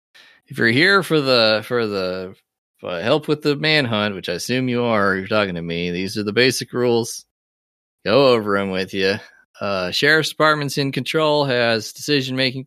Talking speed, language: 185 wpm, English